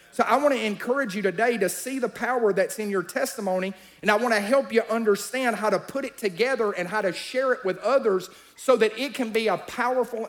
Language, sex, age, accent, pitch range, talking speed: English, male, 40-59, American, 190-230 Hz, 240 wpm